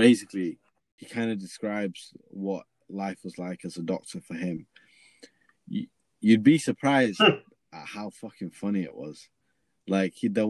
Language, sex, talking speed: English, male, 145 wpm